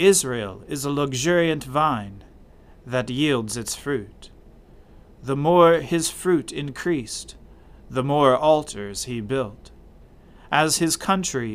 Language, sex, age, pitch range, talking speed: English, male, 40-59, 105-155 Hz, 115 wpm